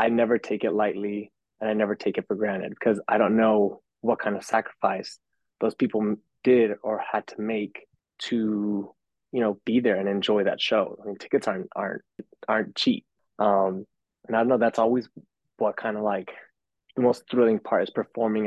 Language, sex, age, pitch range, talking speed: English, male, 20-39, 105-120 Hz, 195 wpm